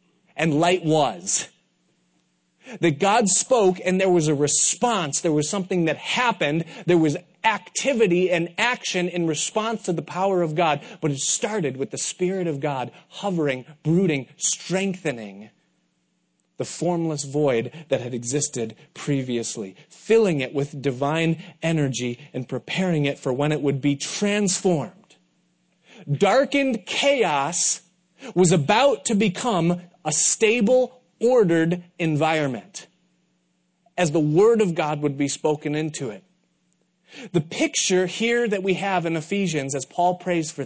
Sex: male